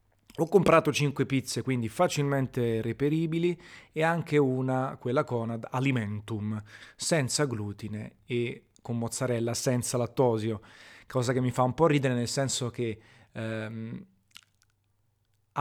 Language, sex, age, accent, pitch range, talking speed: Italian, male, 30-49, native, 110-135 Hz, 125 wpm